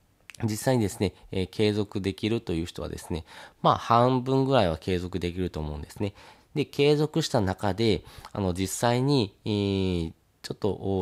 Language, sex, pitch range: Japanese, male, 90-115 Hz